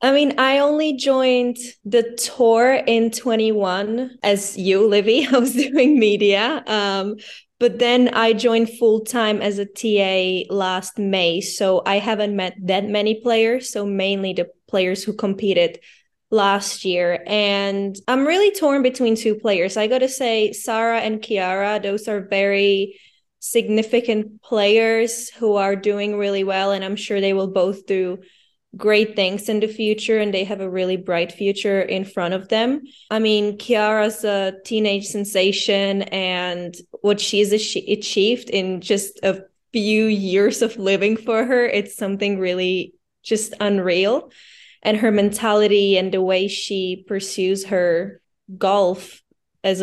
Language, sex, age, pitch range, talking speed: English, female, 20-39, 195-225 Hz, 150 wpm